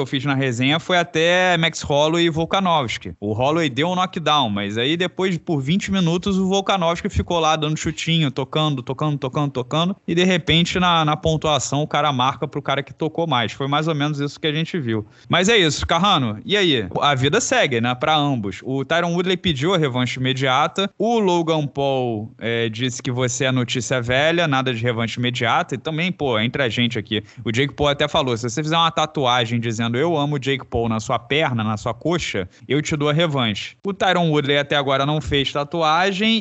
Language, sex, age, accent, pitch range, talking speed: Portuguese, male, 20-39, Brazilian, 125-165 Hz, 210 wpm